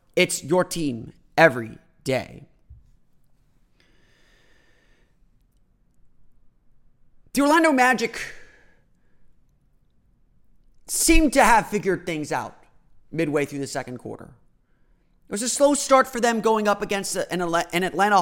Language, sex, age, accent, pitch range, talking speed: English, male, 30-49, American, 140-205 Hz, 100 wpm